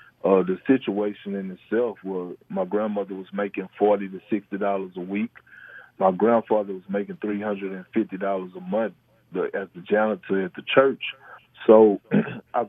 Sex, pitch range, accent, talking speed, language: male, 95-115 Hz, American, 145 wpm, English